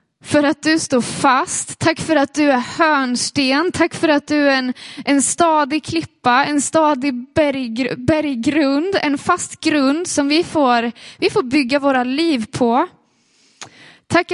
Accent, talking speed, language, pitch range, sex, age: native, 155 wpm, Swedish, 270-330 Hz, female, 20-39